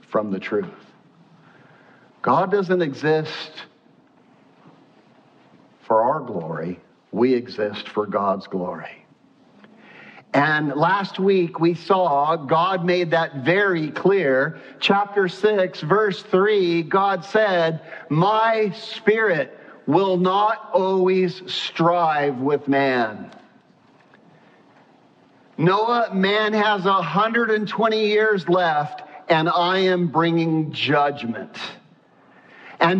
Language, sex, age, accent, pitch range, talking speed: English, male, 50-69, American, 140-195 Hz, 95 wpm